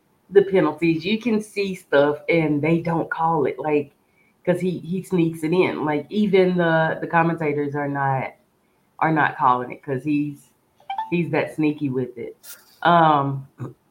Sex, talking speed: female, 160 wpm